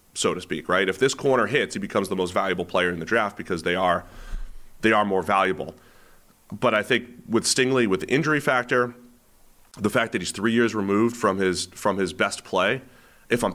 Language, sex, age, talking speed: English, male, 30-49, 215 wpm